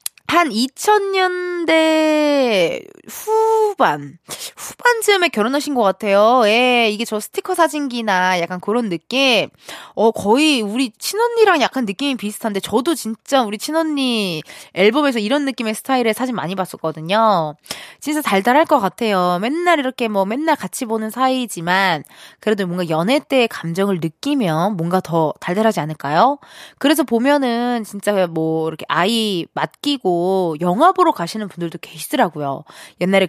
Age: 20-39